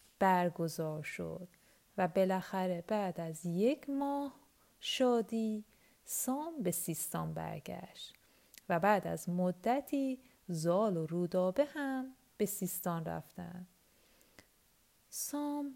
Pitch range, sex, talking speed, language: 175-240 Hz, female, 95 wpm, Persian